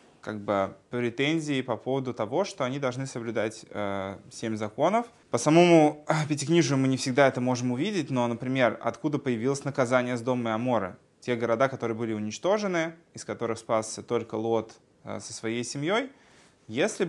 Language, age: Russian, 20-39